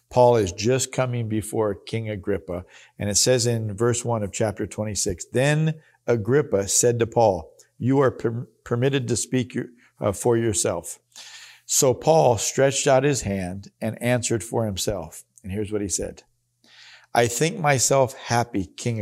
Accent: American